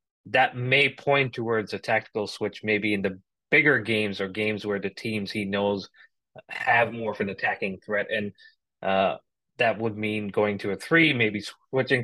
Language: English